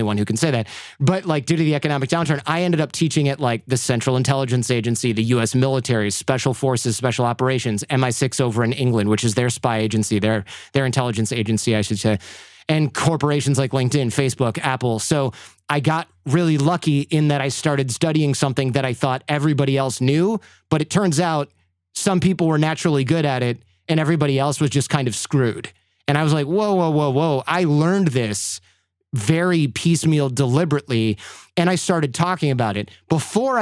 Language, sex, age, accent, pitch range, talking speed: English, male, 30-49, American, 120-150 Hz, 190 wpm